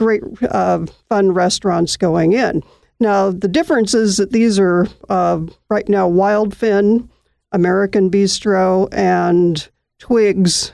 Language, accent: English, American